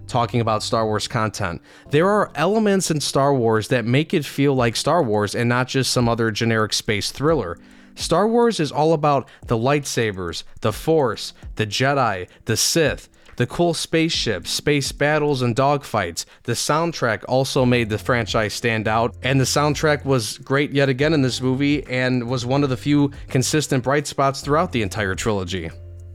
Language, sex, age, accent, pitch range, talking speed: English, male, 20-39, American, 115-150 Hz, 175 wpm